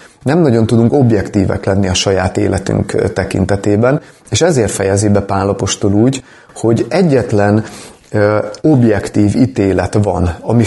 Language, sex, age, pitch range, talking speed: Hungarian, male, 30-49, 100-120 Hz, 120 wpm